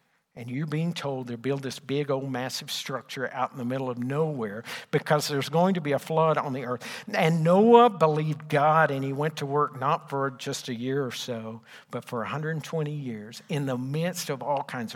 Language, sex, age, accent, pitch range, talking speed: English, male, 50-69, American, 125-160 Hz, 215 wpm